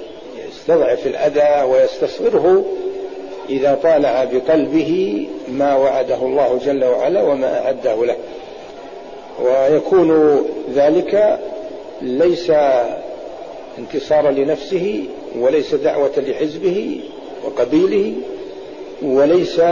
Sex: male